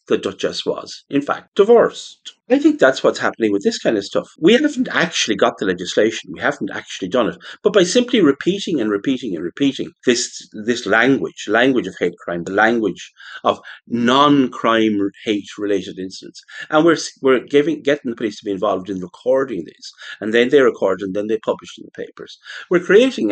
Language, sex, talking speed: English, male, 195 wpm